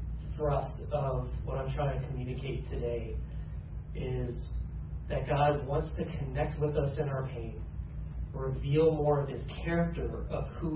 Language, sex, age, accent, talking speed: English, male, 30-49, American, 140 wpm